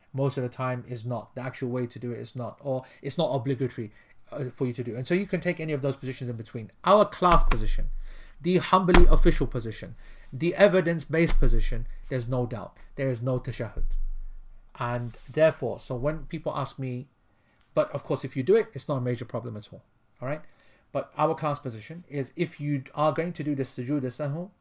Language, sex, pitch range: English, male, 120-155 Hz